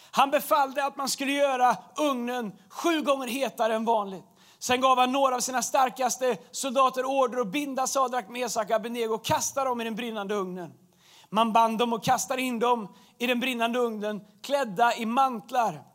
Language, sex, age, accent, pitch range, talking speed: Swedish, male, 30-49, native, 205-265 Hz, 175 wpm